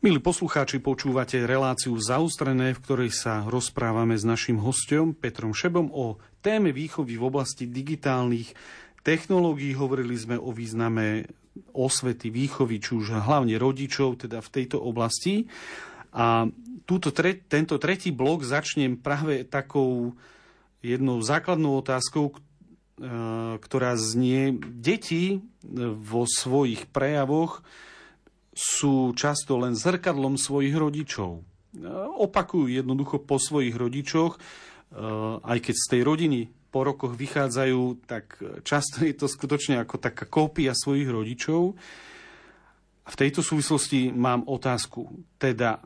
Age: 40-59